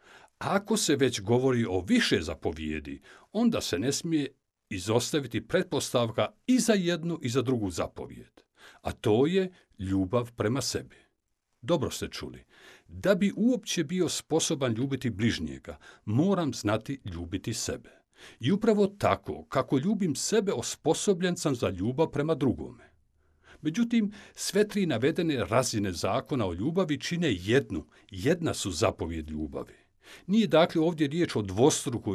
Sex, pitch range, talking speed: male, 110-175 Hz, 135 wpm